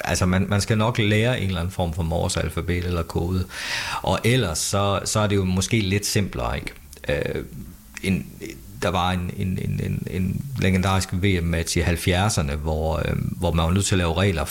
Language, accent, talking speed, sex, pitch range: Danish, native, 205 wpm, male, 85-105 Hz